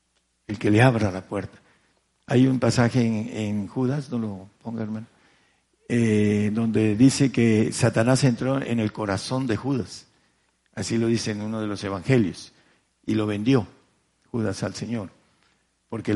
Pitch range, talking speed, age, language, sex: 105-130 Hz, 155 wpm, 50-69, Spanish, male